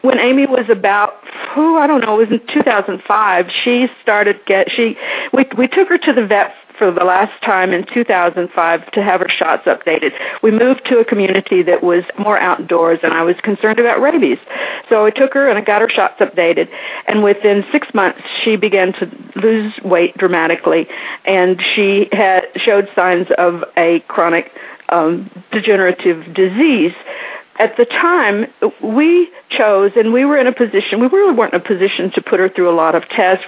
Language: English